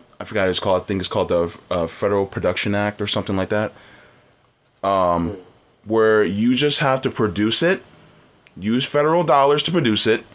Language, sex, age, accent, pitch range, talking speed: English, male, 20-39, American, 105-130 Hz, 180 wpm